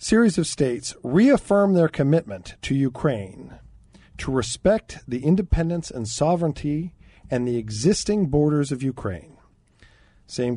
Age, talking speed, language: 50-69, 120 wpm, English